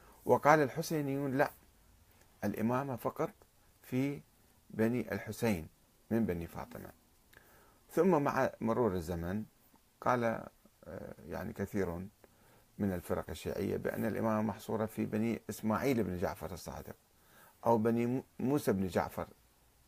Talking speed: 105 wpm